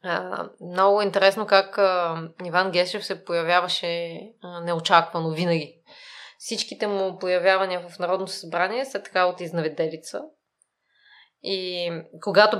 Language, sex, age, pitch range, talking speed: Bulgarian, female, 20-39, 170-220 Hz, 115 wpm